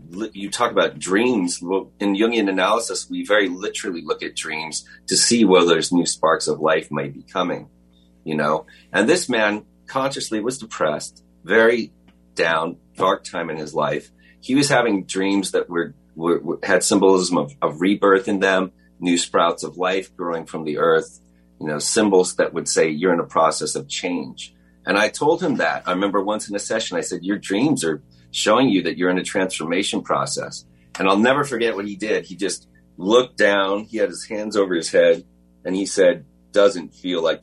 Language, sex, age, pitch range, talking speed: English, male, 30-49, 75-120 Hz, 195 wpm